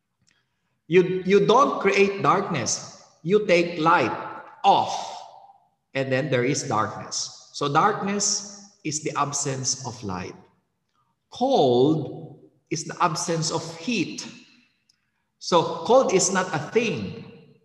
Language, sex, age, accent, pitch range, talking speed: Indonesian, male, 50-69, Filipino, 140-200 Hz, 110 wpm